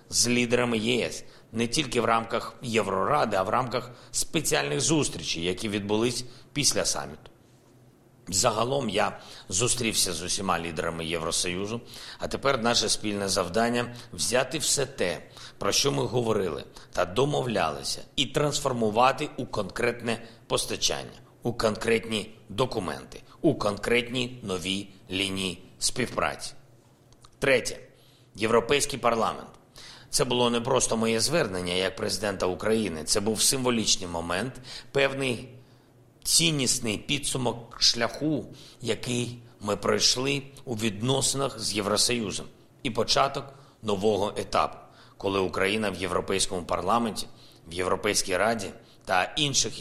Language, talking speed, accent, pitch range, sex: Ukrainian, 115 wpm, native, 105-125 Hz, male